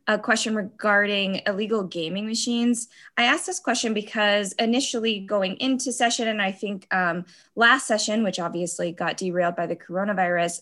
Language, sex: English, female